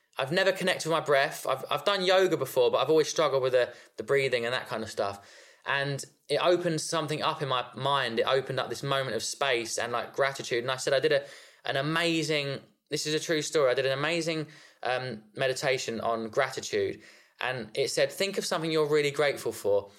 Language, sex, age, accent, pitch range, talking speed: English, male, 20-39, British, 135-175 Hz, 215 wpm